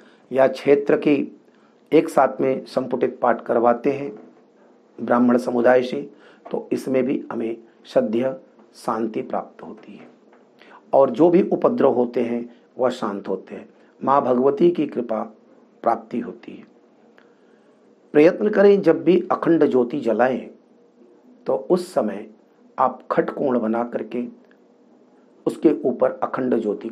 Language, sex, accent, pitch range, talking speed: Hindi, male, native, 115-165 Hz, 125 wpm